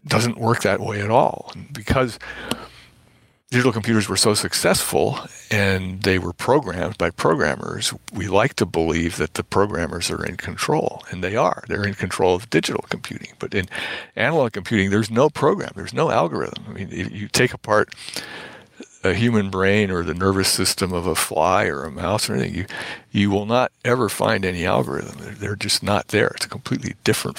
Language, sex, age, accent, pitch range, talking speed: English, male, 60-79, American, 95-110 Hz, 180 wpm